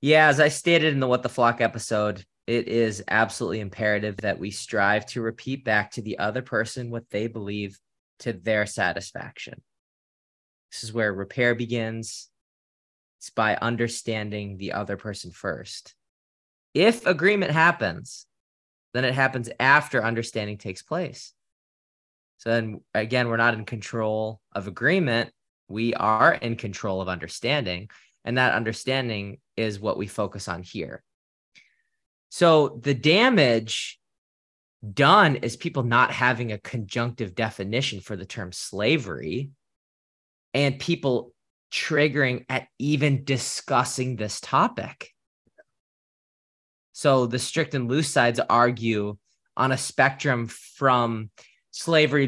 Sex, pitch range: male, 105-130 Hz